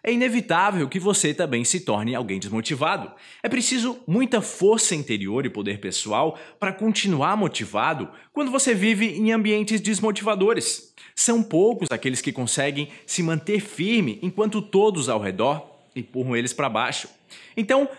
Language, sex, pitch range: Portuguese, male, 130-210 Hz